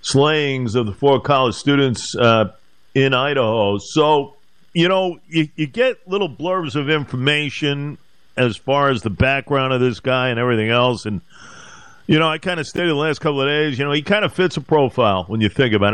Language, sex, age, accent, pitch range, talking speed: English, male, 50-69, American, 120-150 Hz, 205 wpm